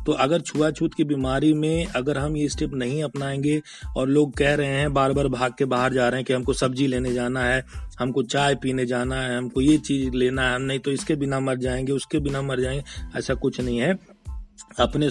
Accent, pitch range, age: native, 130-145 Hz, 40-59